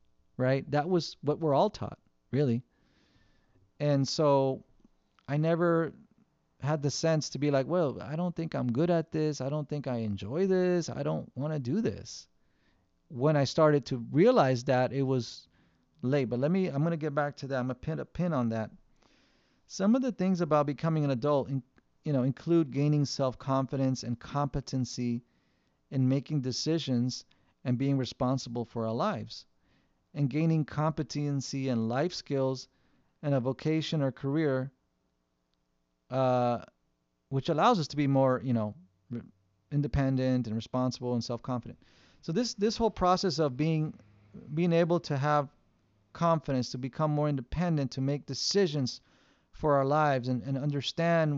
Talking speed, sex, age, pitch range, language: 160 wpm, male, 40-59, 125-155 Hz, English